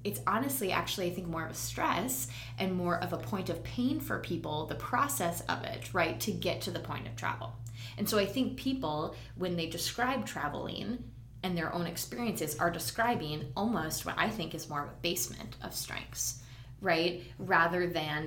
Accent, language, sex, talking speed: American, English, female, 195 wpm